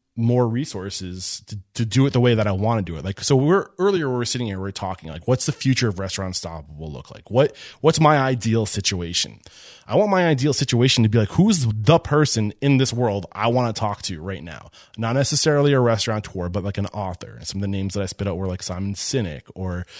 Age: 20-39